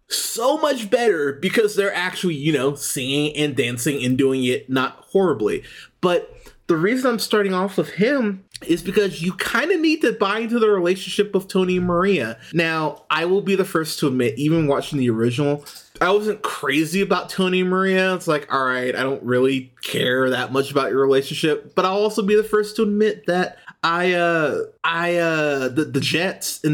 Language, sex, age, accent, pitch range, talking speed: English, male, 20-39, American, 145-220 Hz, 200 wpm